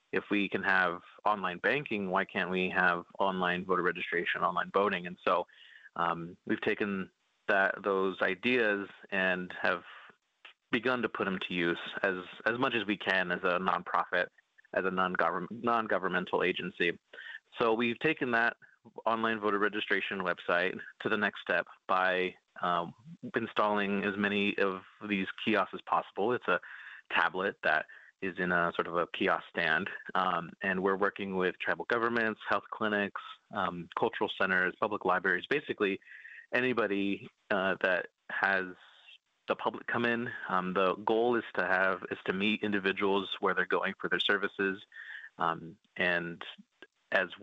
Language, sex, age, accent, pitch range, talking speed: English, male, 30-49, American, 90-105 Hz, 155 wpm